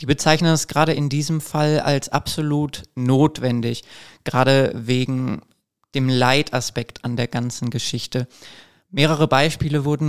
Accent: German